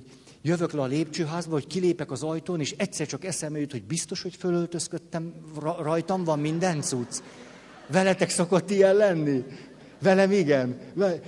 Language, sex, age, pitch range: Hungarian, male, 60-79, 120-165 Hz